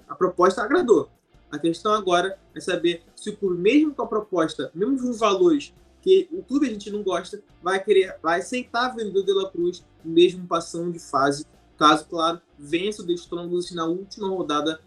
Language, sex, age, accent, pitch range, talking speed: Portuguese, male, 20-39, Brazilian, 170-225 Hz, 190 wpm